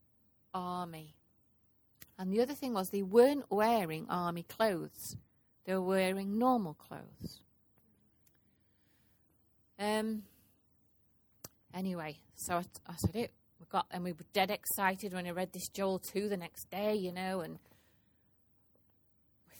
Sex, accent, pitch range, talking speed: female, British, 175-210 Hz, 130 wpm